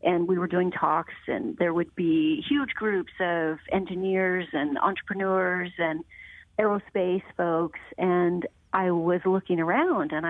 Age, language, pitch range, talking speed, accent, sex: 40-59, English, 170-195 Hz, 140 wpm, American, female